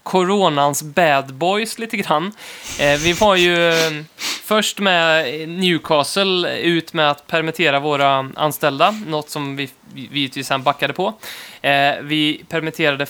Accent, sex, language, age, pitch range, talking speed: native, male, Swedish, 20-39, 140-180 Hz, 120 wpm